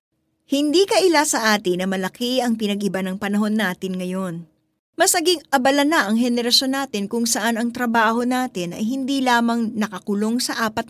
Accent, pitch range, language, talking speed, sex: native, 195-260 Hz, Filipino, 165 wpm, female